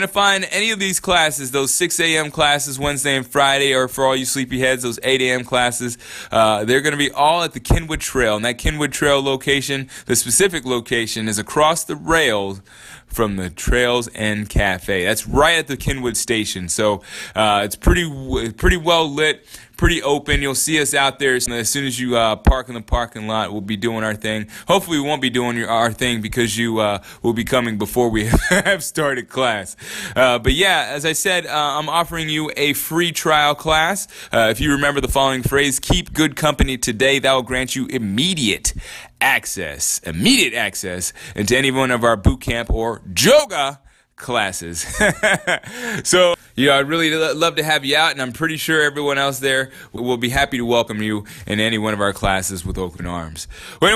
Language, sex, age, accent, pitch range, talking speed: English, male, 20-39, American, 115-155 Hz, 200 wpm